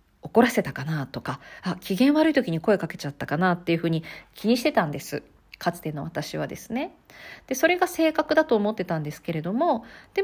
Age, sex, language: 40-59, female, Japanese